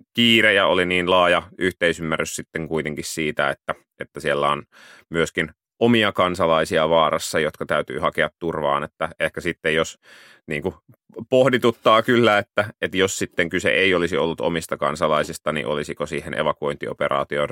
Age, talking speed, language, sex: 30-49, 145 wpm, Finnish, male